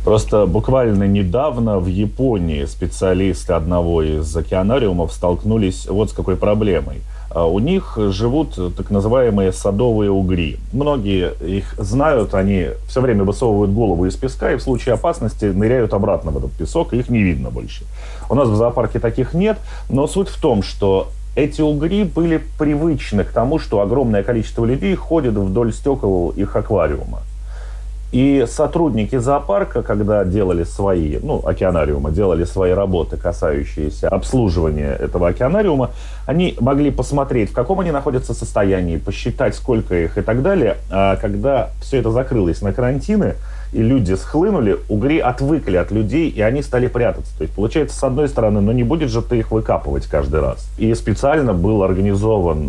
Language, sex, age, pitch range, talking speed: Russian, male, 30-49, 95-130 Hz, 155 wpm